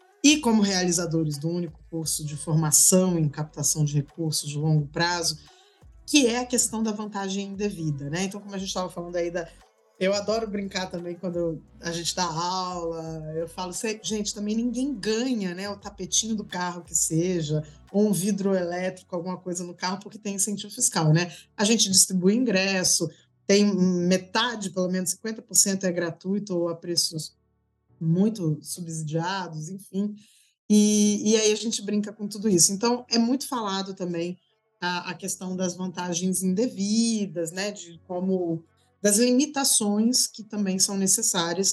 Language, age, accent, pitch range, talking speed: Portuguese, 20-39, Brazilian, 170-205 Hz, 160 wpm